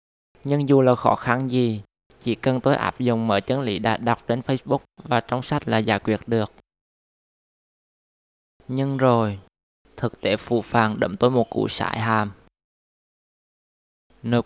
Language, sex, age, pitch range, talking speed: Vietnamese, male, 20-39, 100-125 Hz, 160 wpm